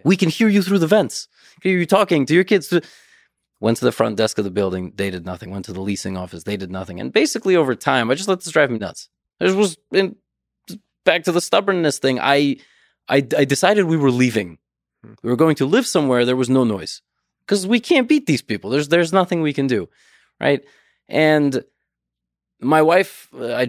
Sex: male